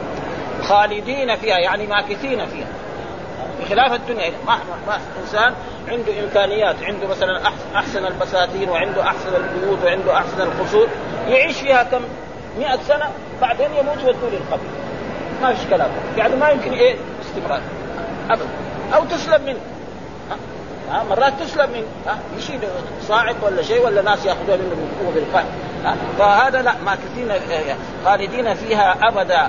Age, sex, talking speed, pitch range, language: 40-59, male, 125 wpm, 185-245 Hz, Arabic